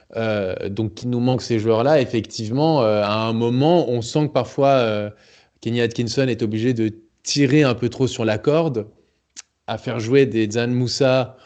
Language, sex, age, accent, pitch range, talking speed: French, male, 20-39, French, 110-125 Hz, 185 wpm